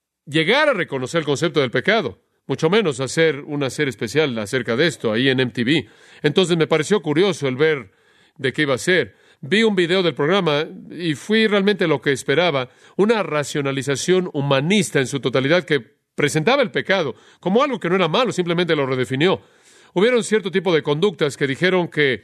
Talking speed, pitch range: 185 wpm, 140-185 Hz